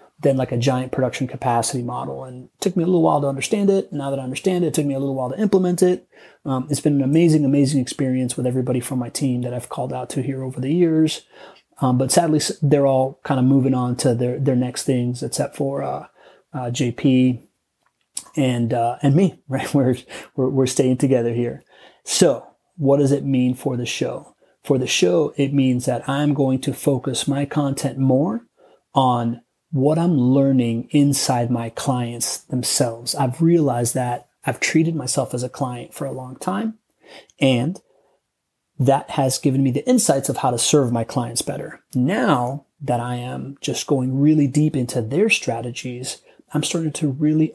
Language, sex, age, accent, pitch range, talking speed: English, male, 30-49, American, 125-150 Hz, 195 wpm